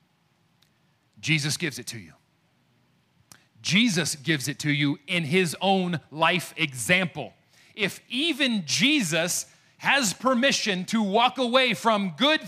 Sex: male